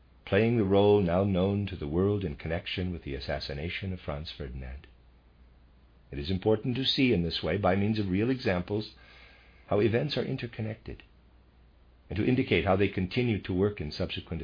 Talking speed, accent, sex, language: 180 wpm, American, male, English